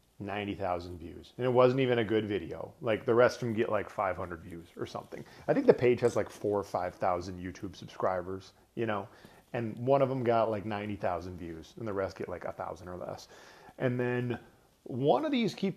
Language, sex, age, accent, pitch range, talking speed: English, male, 30-49, American, 100-135 Hz, 215 wpm